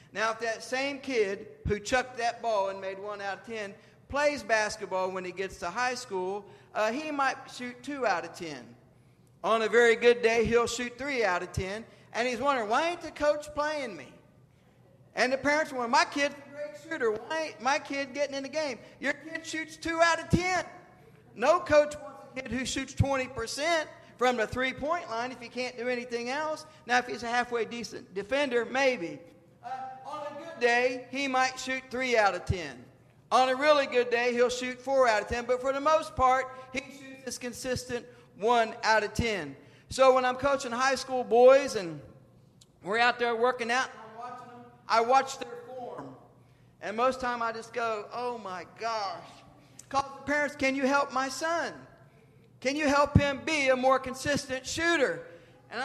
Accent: American